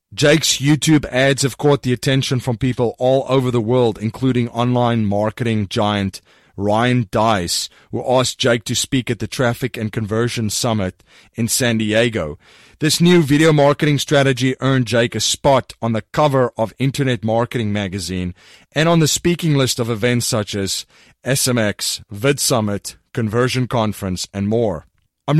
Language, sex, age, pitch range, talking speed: English, male, 30-49, 115-140 Hz, 155 wpm